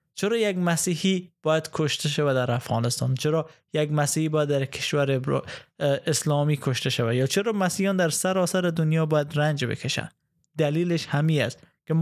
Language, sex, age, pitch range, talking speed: Persian, male, 20-39, 145-170 Hz, 150 wpm